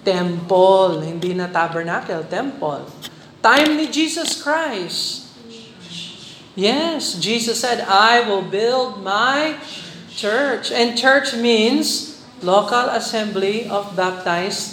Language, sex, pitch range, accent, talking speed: Filipino, male, 195-260 Hz, native, 95 wpm